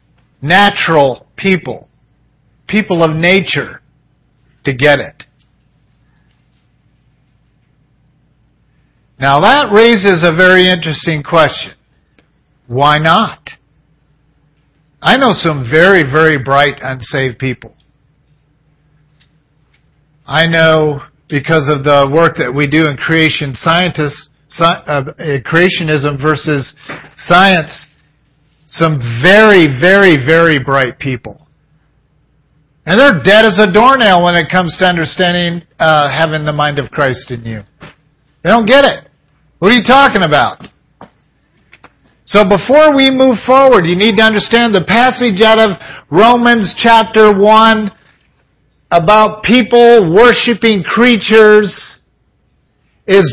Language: English